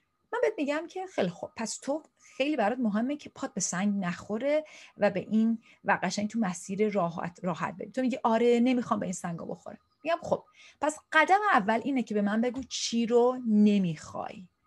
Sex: female